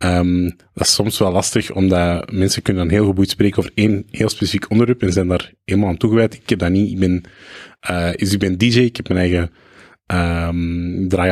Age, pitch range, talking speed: 30-49, 95-110 Hz, 215 wpm